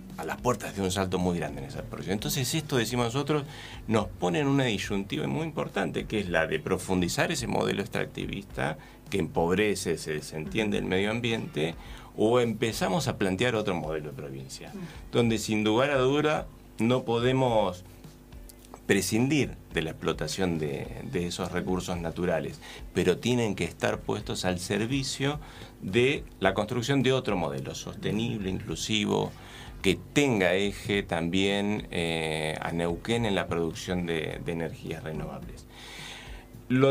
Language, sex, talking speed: Spanish, male, 150 wpm